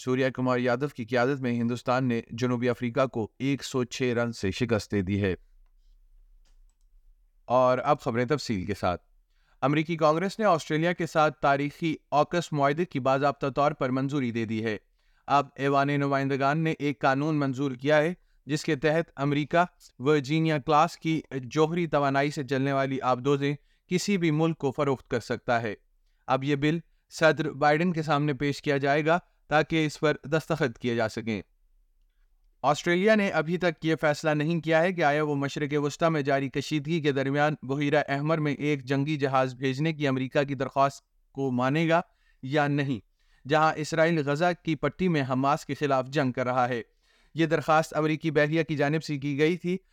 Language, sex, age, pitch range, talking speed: Urdu, male, 30-49, 130-155 Hz, 165 wpm